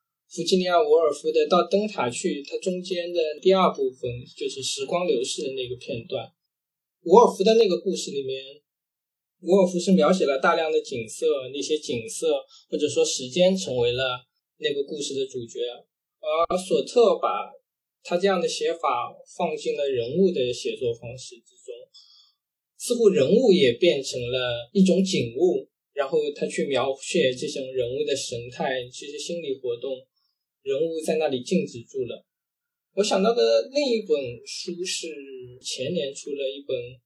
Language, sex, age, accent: Chinese, male, 20-39, native